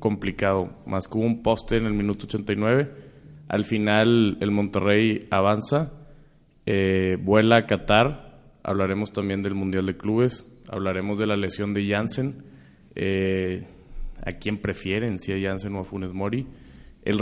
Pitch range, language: 95-115 Hz, Spanish